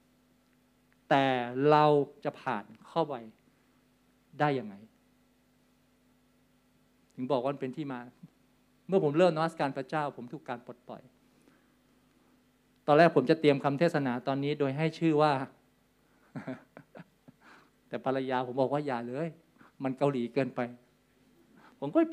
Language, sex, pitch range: Thai, male, 130-165 Hz